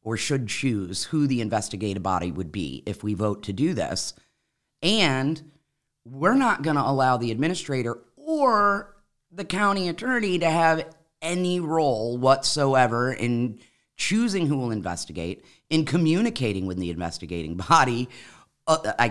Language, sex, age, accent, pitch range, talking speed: English, female, 30-49, American, 115-160 Hz, 140 wpm